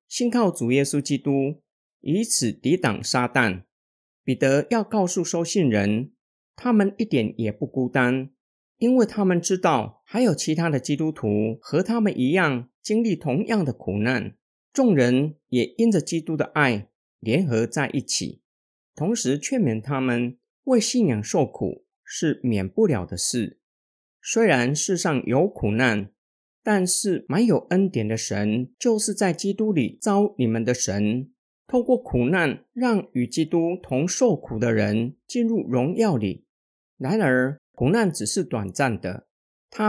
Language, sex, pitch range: Chinese, male, 120-200 Hz